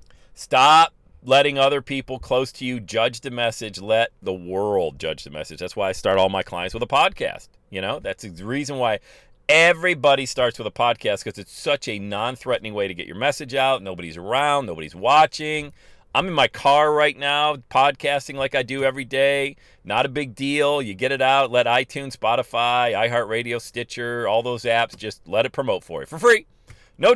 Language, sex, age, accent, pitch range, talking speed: English, male, 40-59, American, 115-145 Hz, 200 wpm